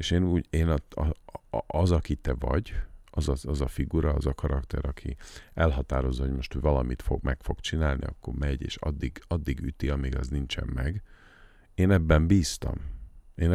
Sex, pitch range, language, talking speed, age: male, 70-85 Hz, Hungarian, 160 wpm, 50-69